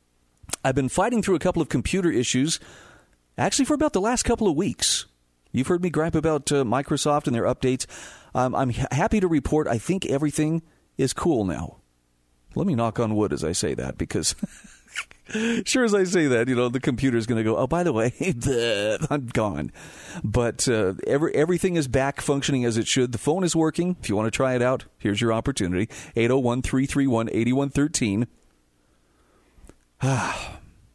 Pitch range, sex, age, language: 105-150 Hz, male, 40-59, English